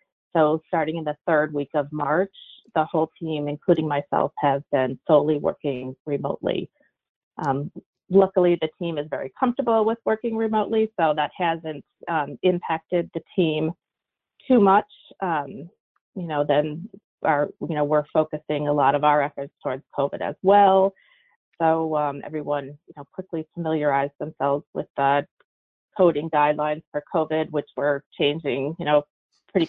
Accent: American